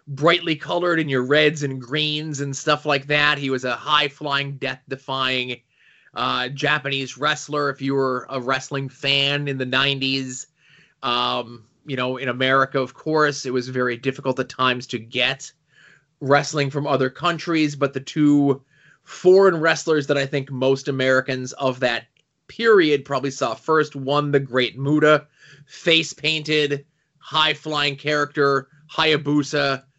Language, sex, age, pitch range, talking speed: English, male, 20-39, 125-150 Hz, 140 wpm